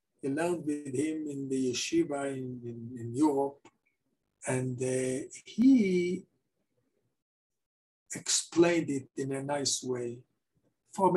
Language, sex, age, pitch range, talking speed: English, male, 60-79, 140-195 Hz, 105 wpm